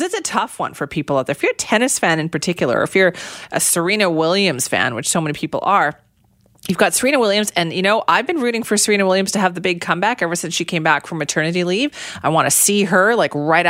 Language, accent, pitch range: English, American, 165-225 Hz